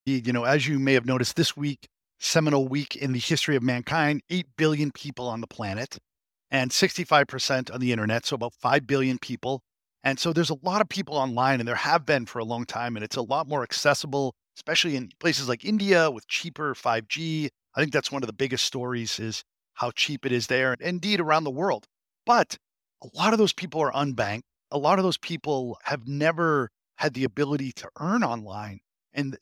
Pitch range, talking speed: 125-160 Hz, 210 wpm